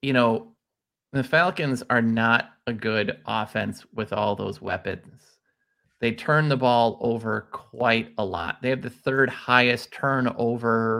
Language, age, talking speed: English, 30-49, 145 wpm